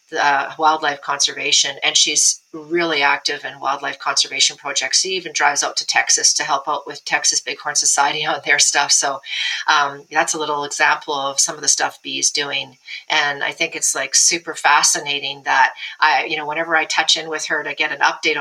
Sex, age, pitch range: female, 40-59, 150-175 Hz